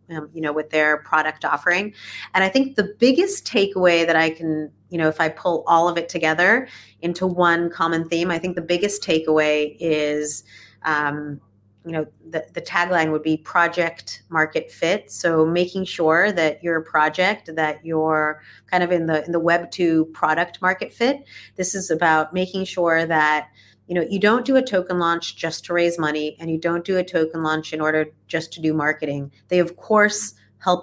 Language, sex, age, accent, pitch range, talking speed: English, female, 30-49, American, 155-190 Hz, 195 wpm